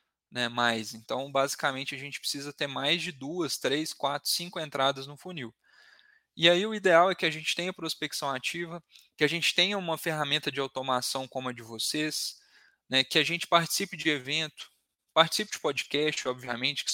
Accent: Brazilian